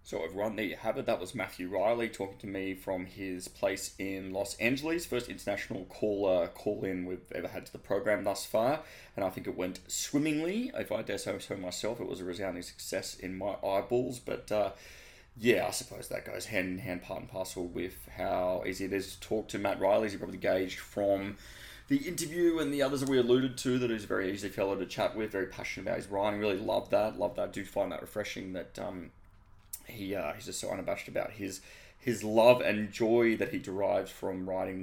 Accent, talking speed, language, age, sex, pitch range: Australian, 220 wpm, English, 20-39, male, 95-115 Hz